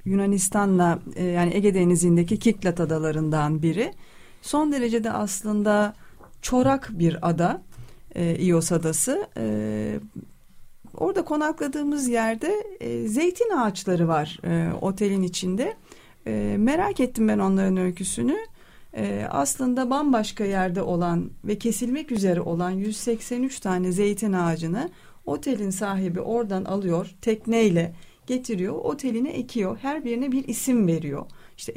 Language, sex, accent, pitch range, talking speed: Turkish, female, native, 175-255 Hz, 115 wpm